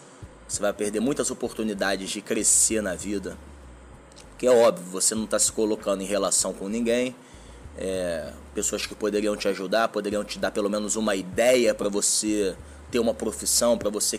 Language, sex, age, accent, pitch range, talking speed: Portuguese, male, 20-39, Brazilian, 100-125 Hz, 170 wpm